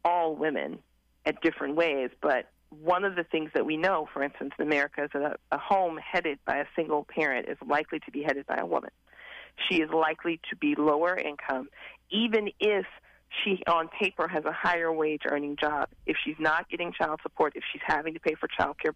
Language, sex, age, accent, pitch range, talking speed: English, female, 40-59, American, 145-175 Hz, 210 wpm